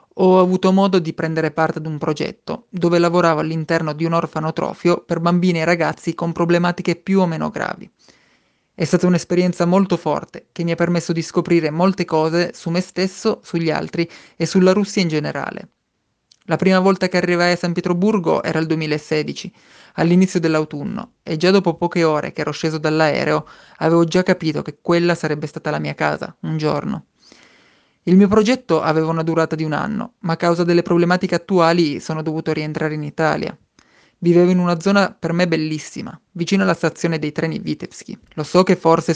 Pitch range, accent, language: 160-180 Hz, Italian, Russian